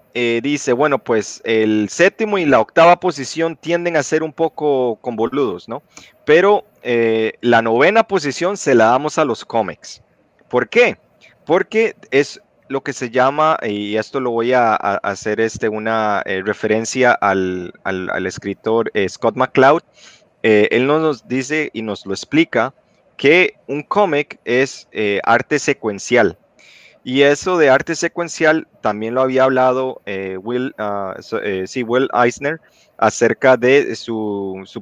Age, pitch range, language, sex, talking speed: 30-49, 110-155 Hz, Spanish, male, 150 wpm